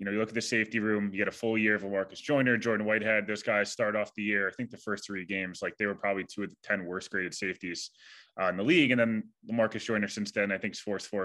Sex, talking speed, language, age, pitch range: male, 305 wpm, English, 20-39, 100-120 Hz